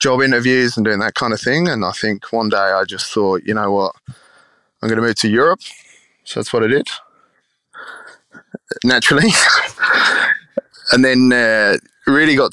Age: 20-39